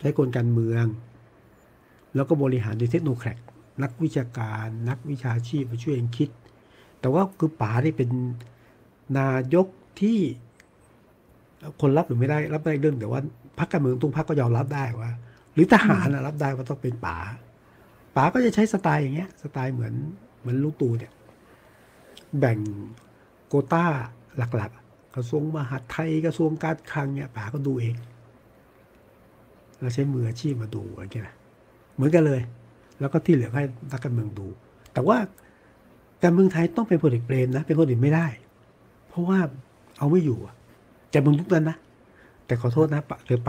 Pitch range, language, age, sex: 120-155 Hz, Thai, 60-79, male